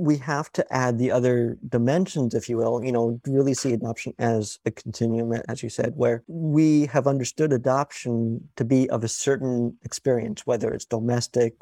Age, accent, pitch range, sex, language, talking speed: 50-69, American, 115-130 Hz, male, English, 180 wpm